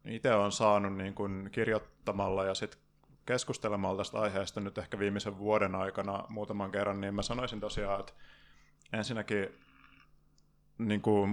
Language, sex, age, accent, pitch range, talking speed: Finnish, male, 20-39, native, 100-110 Hz, 130 wpm